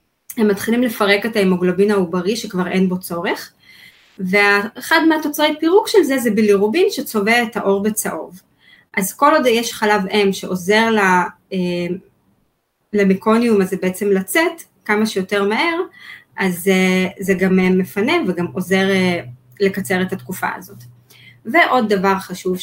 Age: 20-39